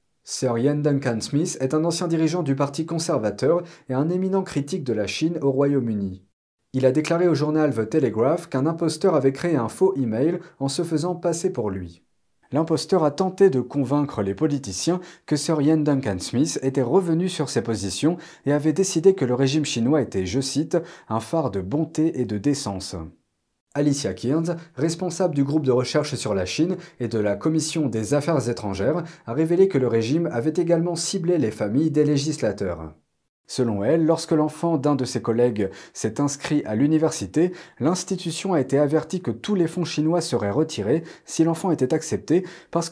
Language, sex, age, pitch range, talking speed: French, male, 40-59, 125-165 Hz, 185 wpm